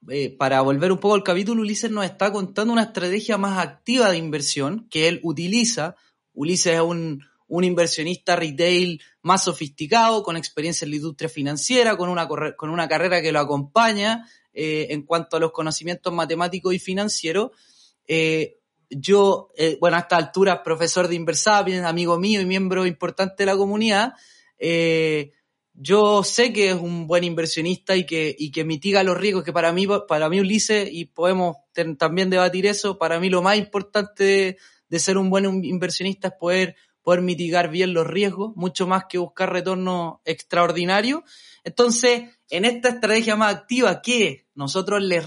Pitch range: 165-205 Hz